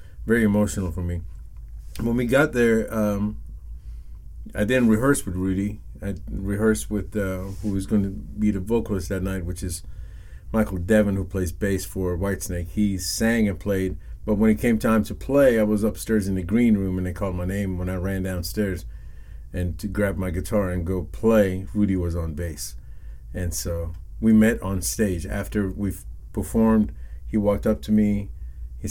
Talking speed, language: 185 wpm, English